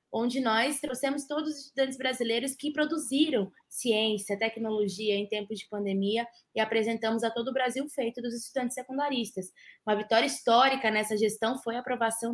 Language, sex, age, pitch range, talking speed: Portuguese, female, 20-39, 230-285 Hz, 160 wpm